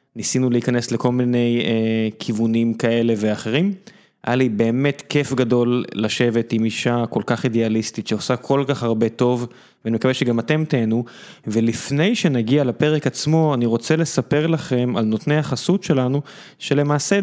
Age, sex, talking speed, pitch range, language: 20-39, male, 145 wpm, 115-140 Hz, Hebrew